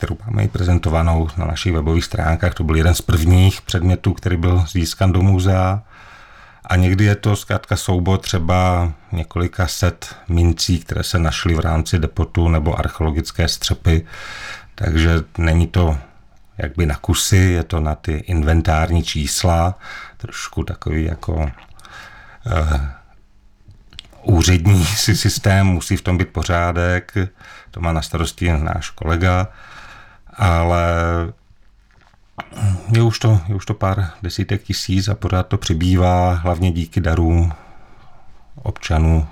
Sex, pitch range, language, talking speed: male, 80-95 Hz, Czech, 130 wpm